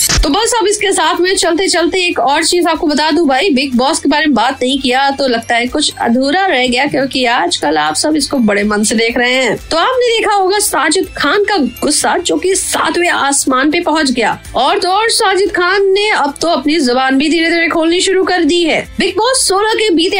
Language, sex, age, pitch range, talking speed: Hindi, female, 20-39, 265-370 Hz, 235 wpm